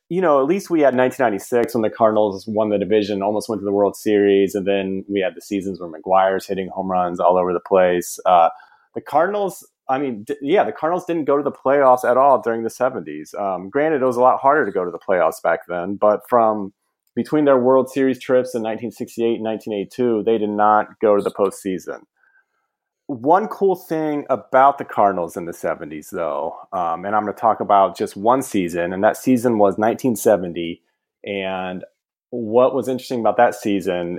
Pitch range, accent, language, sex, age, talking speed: 100-130 Hz, American, English, male, 30-49, 205 wpm